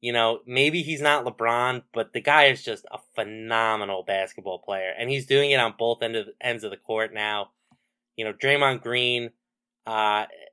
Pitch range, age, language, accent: 110-130 Hz, 20-39, English, American